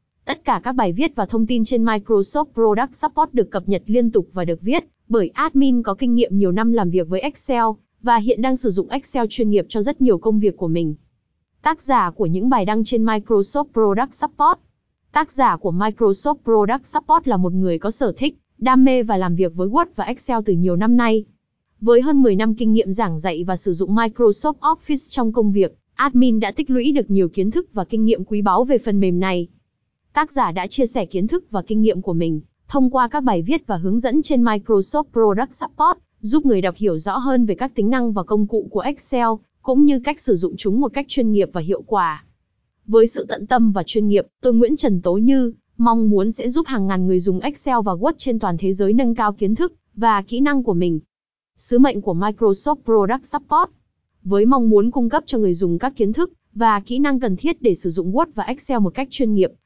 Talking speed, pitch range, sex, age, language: 235 wpm, 200-260 Hz, female, 20-39, Vietnamese